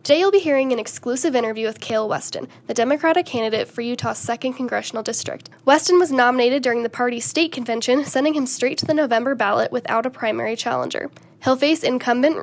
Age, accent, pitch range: 10-29, American, 230-295 Hz